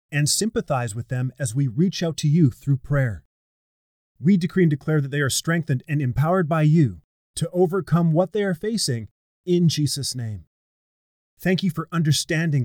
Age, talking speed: 30-49, 175 wpm